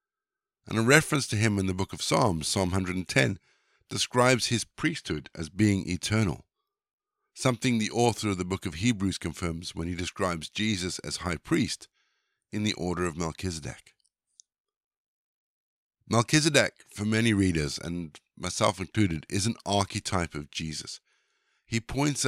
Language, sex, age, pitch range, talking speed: English, male, 50-69, 85-115 Hz, 145 wpm